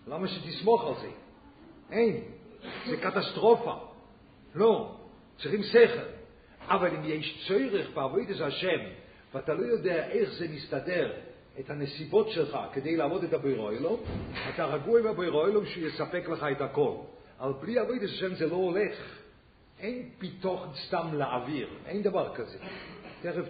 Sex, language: male, English